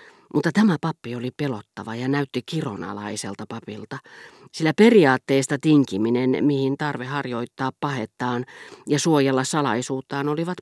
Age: 40-59